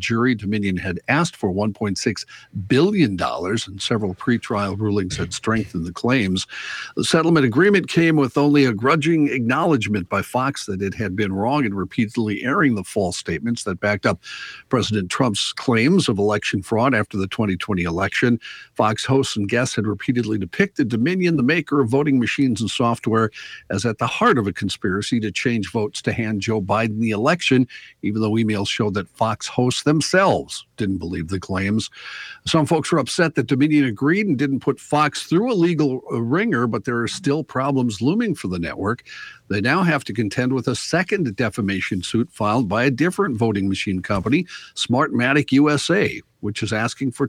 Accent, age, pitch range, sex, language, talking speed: American, 50-69, 105-140 Hz, male, English, 180 wpm